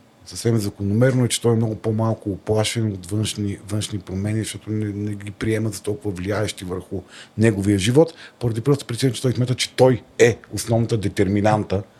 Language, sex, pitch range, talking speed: Bulgarian, male, 100-115 Hz, 175 wpm